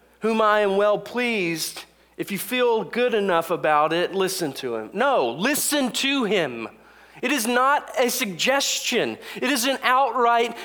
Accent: American